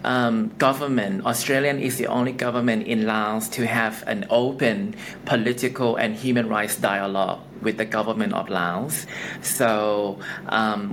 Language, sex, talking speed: English, male, 135 wpm